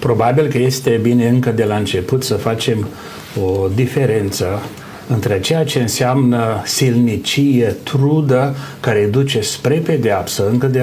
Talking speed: 135 wpm